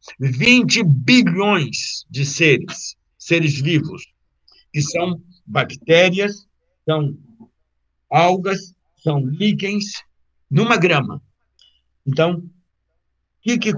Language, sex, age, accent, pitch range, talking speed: Portuguese, male, 60-79, Brazilian, 135-170 Hz, 80 wpm